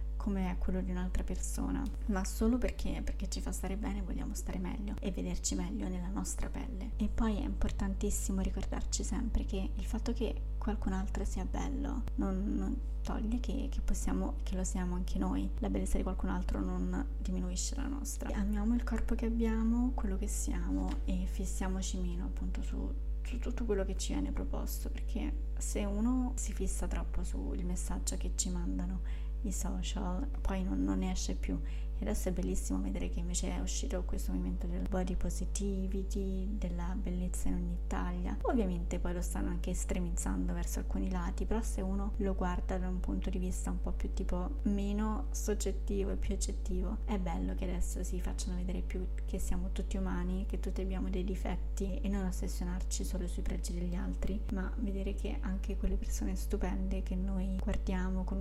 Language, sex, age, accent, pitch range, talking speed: Italian, female, 20-39, native, 180-205 Hz, 185 wpm